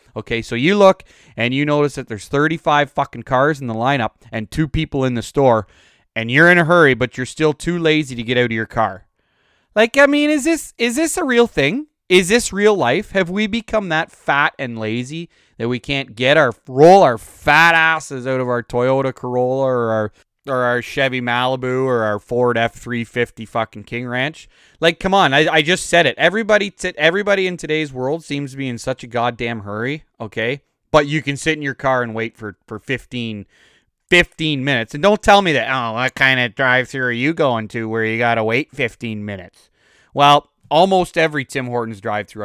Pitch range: 115-160 Hz